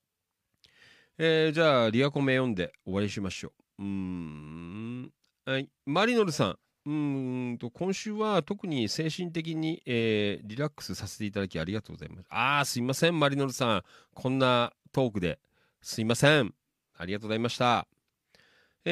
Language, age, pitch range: Japanese, 40-59, 105-160 Hz